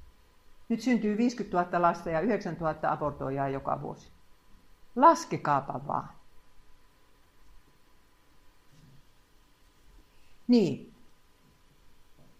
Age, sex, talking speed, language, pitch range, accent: 50-69, female, 70 wpm, Finnish, 165-235 Hz, native